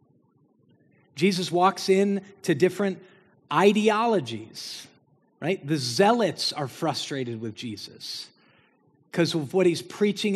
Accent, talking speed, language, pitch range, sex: American, 105 wpm, English, 170-215 Hz, male